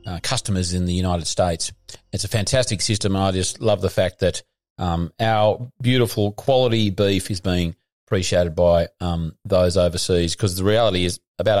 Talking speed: 170 wpm